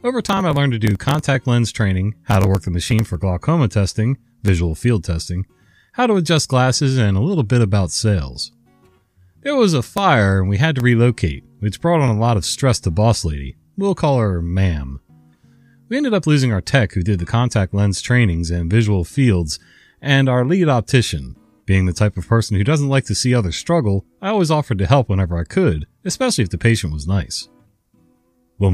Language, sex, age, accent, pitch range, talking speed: English, male, 30-49, American, 95-135 Hz, 205 wpm